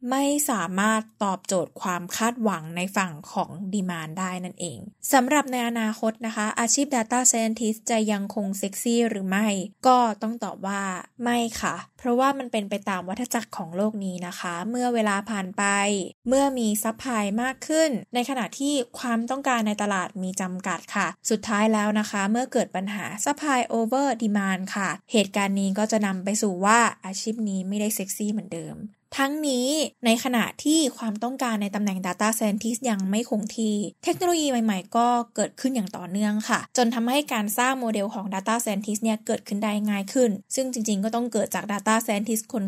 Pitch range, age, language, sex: 200-240 Hz, 20-39, Thai, female